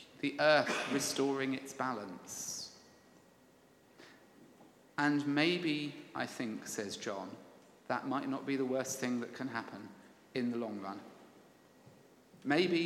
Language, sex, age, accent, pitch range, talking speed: English, male, 40-59, British, 140-185 Hz, 120 wpm